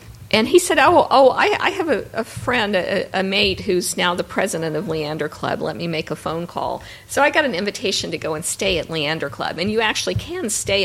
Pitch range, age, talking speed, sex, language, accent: 140-205 Hz, 50-69, 245 wpm, female, English, American